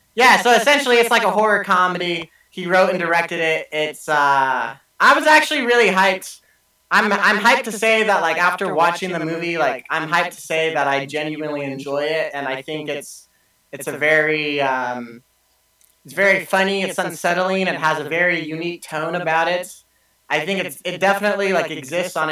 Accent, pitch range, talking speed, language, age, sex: American, 145-190 Hz, 190 wpm, English, 20-39, male